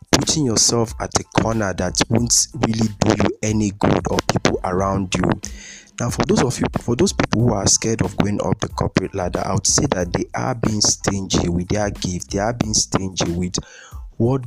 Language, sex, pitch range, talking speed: English, male, 95-115 Hz, 205 wpm